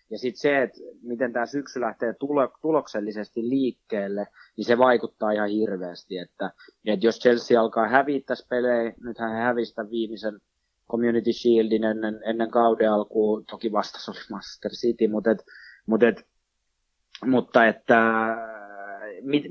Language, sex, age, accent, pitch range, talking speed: Finnish, male, 20-39, native, 105-130 Hz, 135 wpm